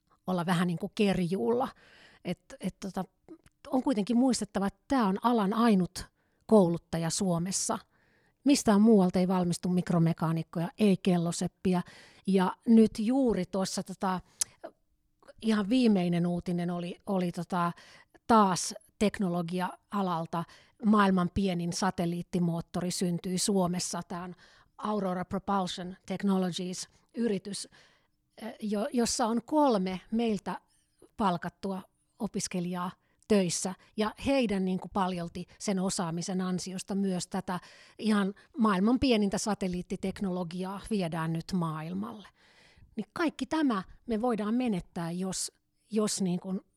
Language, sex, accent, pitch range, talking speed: Finnish, female, native, 180-220 Hz, 105 wpm